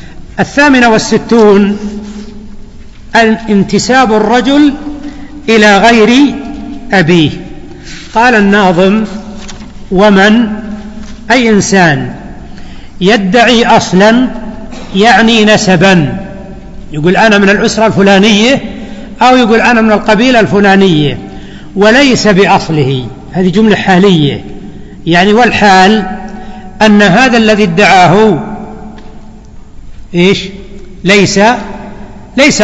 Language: Arabic